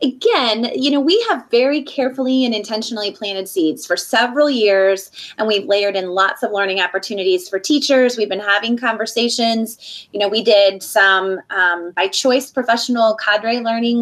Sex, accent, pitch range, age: female, American, 195-240 Hz, 20-39